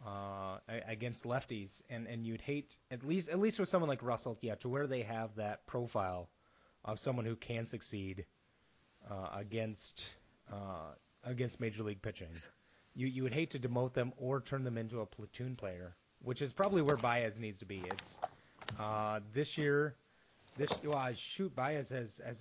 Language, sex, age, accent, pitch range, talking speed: English, male, 30-49, American, 110-130 Hz, 175 wpm